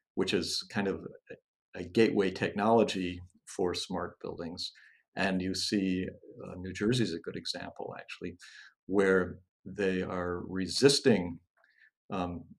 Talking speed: 125 wpm